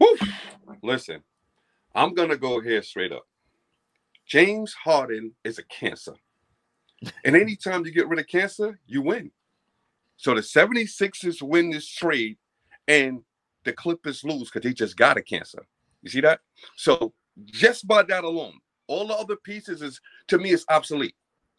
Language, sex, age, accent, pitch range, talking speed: English, male, 40-59, American, 160-215 Hz, 155 wpm